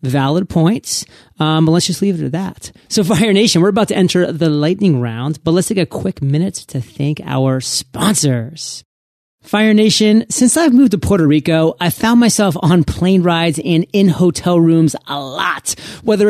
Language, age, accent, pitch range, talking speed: English, 30-49, American, 155-200 Hz, 190 wpm